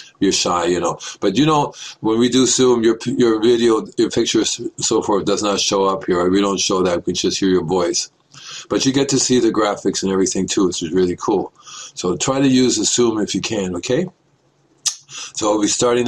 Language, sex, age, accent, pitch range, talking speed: English, male, 50-69, American, 100-125 Hz, 225 wpm